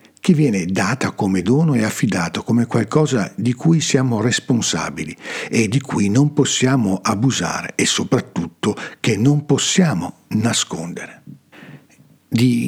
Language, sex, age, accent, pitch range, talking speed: Italian, male, 50-69, native, 105-145 Hz, 125 wpm